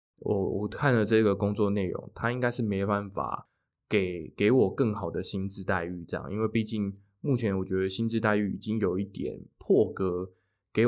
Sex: male